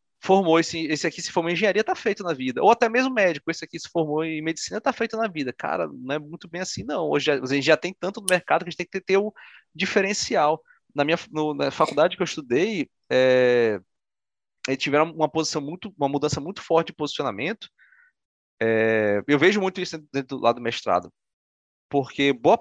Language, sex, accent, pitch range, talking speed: Portuguese, male, Brazilian, 140-180 Hz, 220 wpm